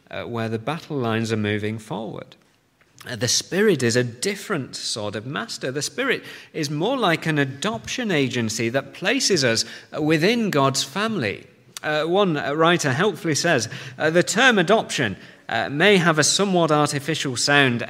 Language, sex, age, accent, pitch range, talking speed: English, male, 40-59, British, 110-155 Hz, 160 wpm